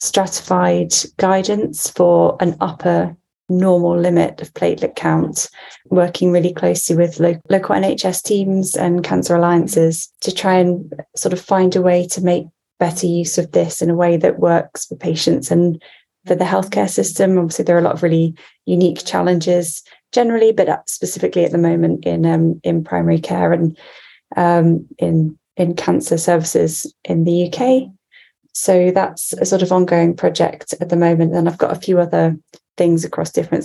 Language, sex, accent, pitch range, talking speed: English, female, British, 165-180 Hz, 170 wpm